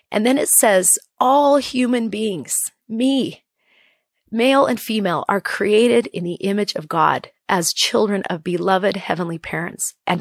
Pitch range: 185-240 Hz